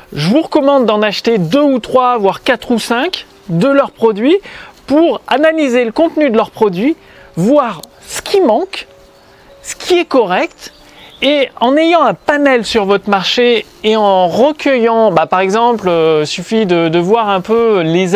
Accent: French